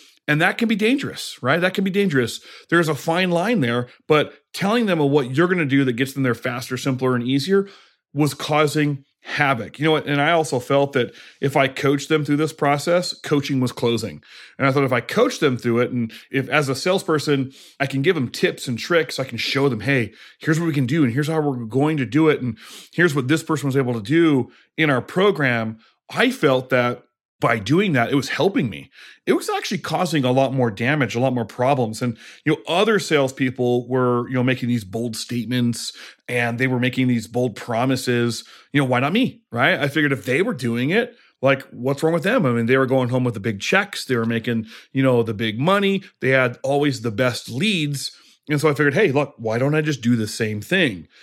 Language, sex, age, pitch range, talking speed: English, male, 30-49, 125-155 Hz, 235 wpm